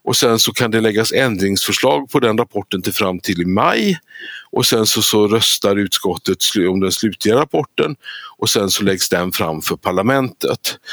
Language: Swedish